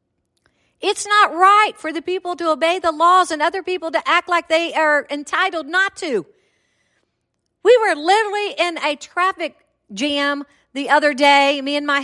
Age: 50-69